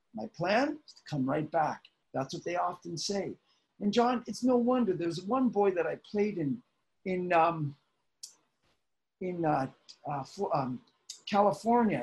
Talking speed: 155 wpm